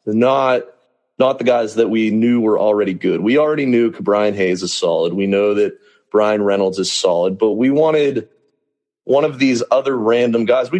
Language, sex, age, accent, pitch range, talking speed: English, male, 30-49, American, 105-125 Hz, 190 wpm